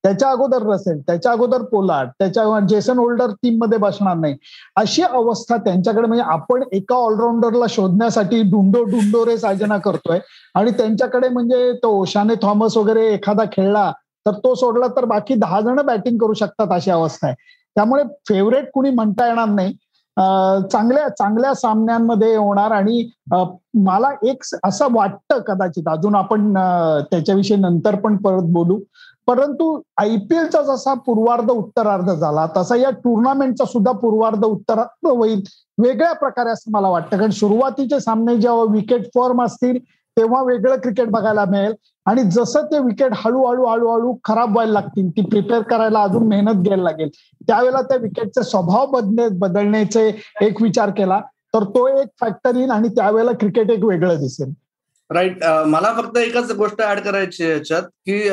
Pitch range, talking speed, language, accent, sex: 200-245 Hz, 150 wpm, Marathi, native, male